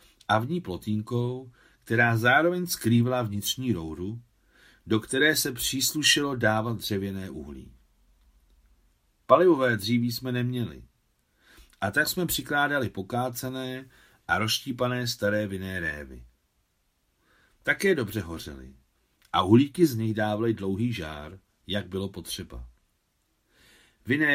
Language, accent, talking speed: Czech, native, 110 wpm